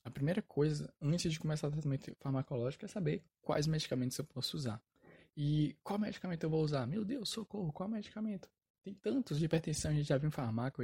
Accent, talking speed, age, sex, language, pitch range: Brazilian, 205 wpm, 10-29, male, Portuguese, 130-160 Hz